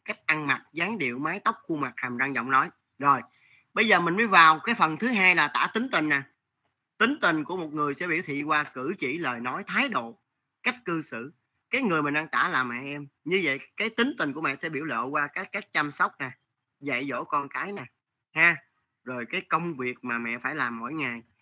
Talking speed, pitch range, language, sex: 240 wpm, 125-160 Hz, Vietnamese, male